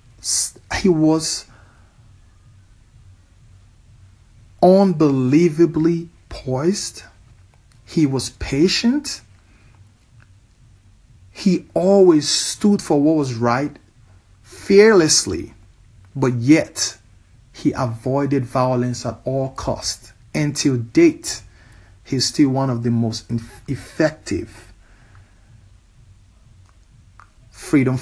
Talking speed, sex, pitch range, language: 70 wpm, male, 100-135 Hz, English